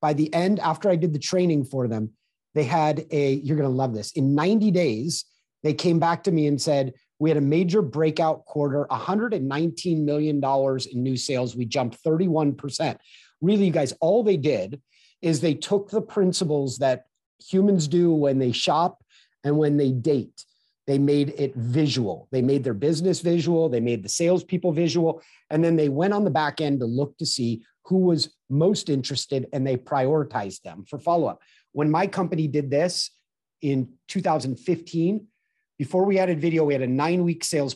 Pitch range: 135-175 Hz